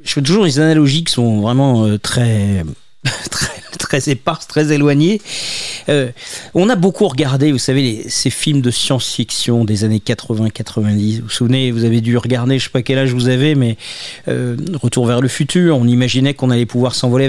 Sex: male